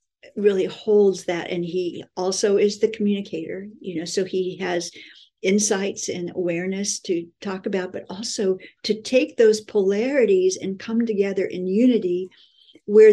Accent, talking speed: American, 145 wpm